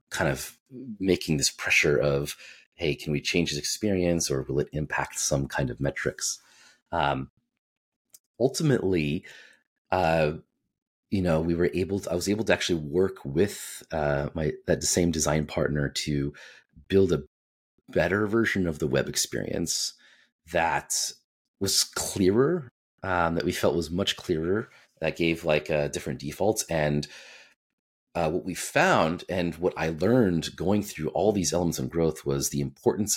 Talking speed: 155 wpm